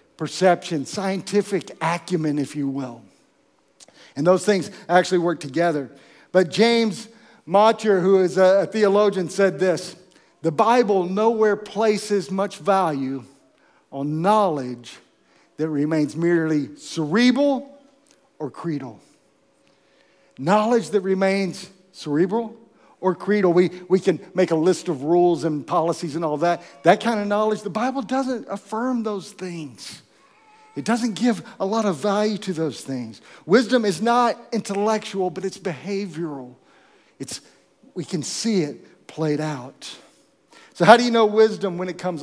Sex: male